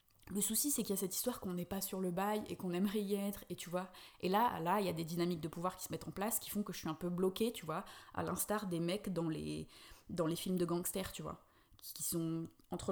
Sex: female